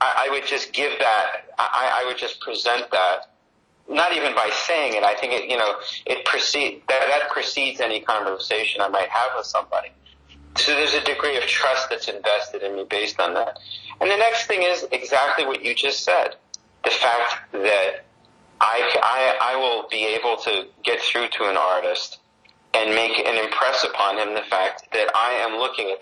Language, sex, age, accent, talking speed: English, male, 30-49, American, 190 wpm